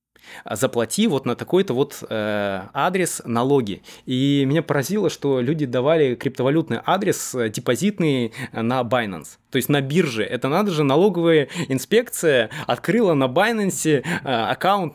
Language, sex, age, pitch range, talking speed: Russian, male, 20-39, 125-170 Hz, 135 wpm